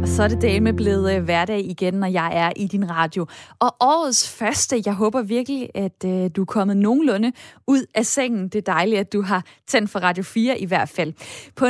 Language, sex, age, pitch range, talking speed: Danish, female, 20-39, 195-255 Hz, 215 wpm